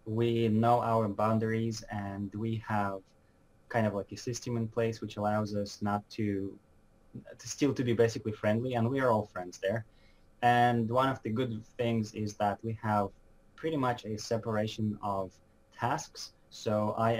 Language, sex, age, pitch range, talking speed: English, male, 20-39, 100-115 Hz, 170 wpm